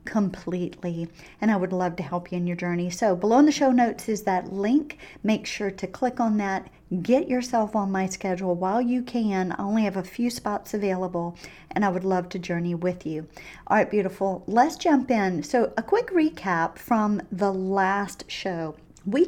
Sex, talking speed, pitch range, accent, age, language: female, 200 wpm, 185-250 Hz, American, 40-59, English